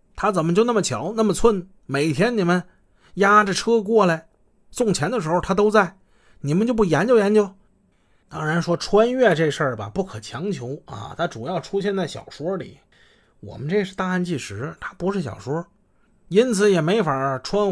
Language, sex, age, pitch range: Chinese, male, 30-49, 140-200 Hz